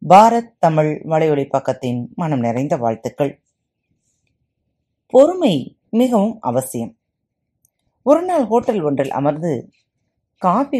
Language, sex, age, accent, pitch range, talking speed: Tamil, female, 30-49, native, 140-235 Hz, 90 wpm